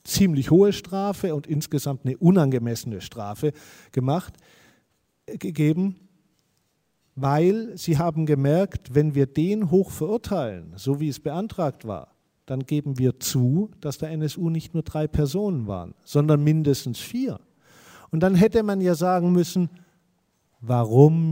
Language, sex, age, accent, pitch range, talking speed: German, male, 50-69, German, 130-185 Hz, 130 wpm